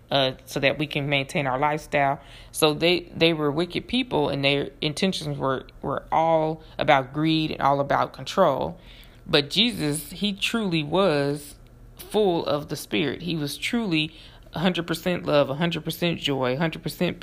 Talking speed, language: 150 wpm, English